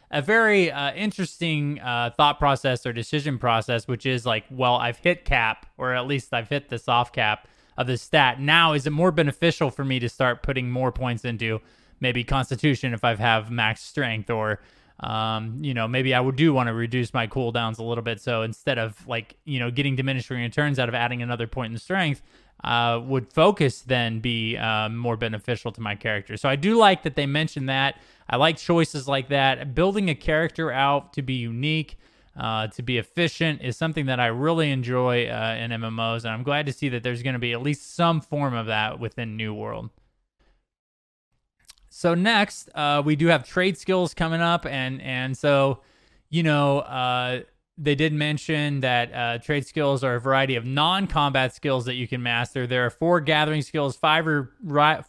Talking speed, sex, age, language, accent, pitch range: 195 wpm, male, 20-39, English, American, 120-150 Hz